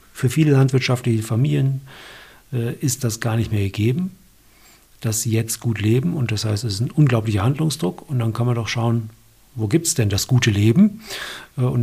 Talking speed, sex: 195 wpm, male